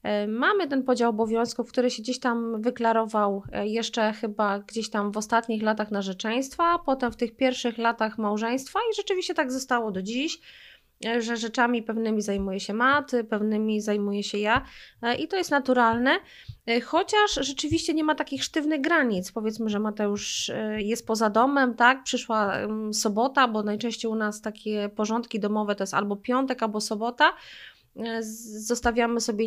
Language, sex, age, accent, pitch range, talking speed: Polish, female, 20-39, native, 210-255 Hz, 150 wpm